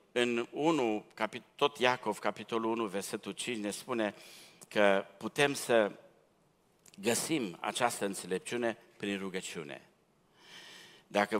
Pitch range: 95-120 Hz